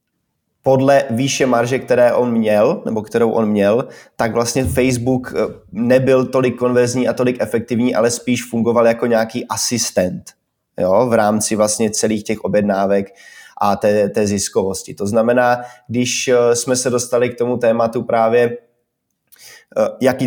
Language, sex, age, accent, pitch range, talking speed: Czech, male, 20-39, native, 110-125 Hz, 135 wpm